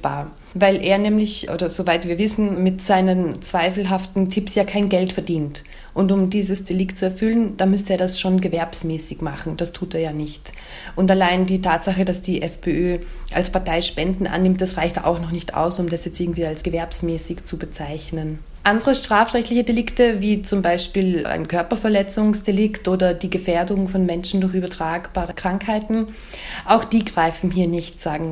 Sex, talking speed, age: female, 170 wpm, 20-39